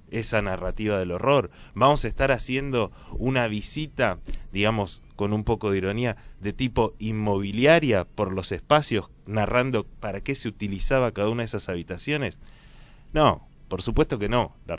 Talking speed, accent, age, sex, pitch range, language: 155 wpm, Argentinian, 30-49, male, 105-140 Hz, Spanish